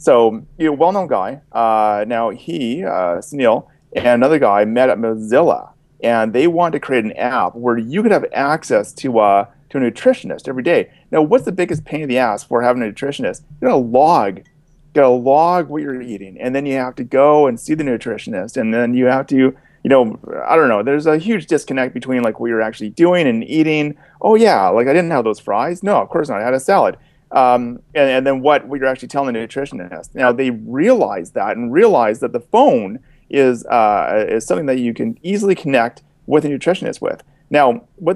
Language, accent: English, American